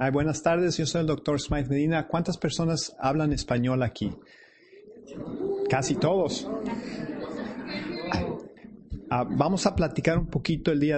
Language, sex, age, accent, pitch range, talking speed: English, male, 40-59, Mexican, 130-165 Hz, 130 wpm